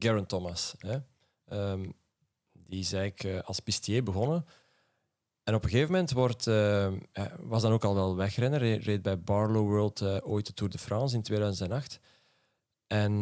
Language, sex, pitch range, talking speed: Dutch, male, 100-120 Hz, 175 wpm